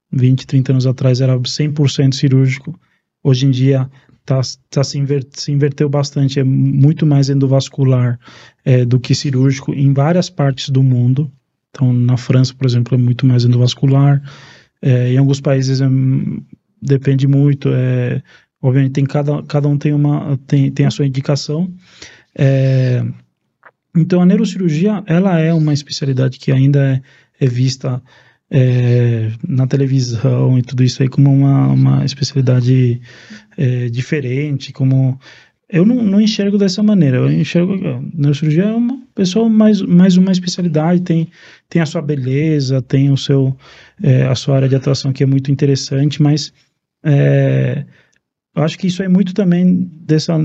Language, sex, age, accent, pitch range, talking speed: Portuguese, male, 20-39, Brazilian, 130-155 Hz, 155 wpm